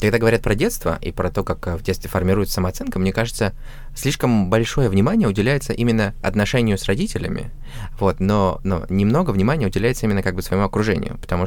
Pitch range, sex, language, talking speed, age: 90-115 Hz, male, Russian, 180 wpm, 20-39